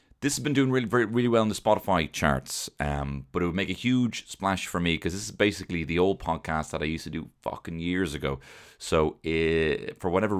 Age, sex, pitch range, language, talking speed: 30-49, male, 75-105 Hz, English, 230 wpm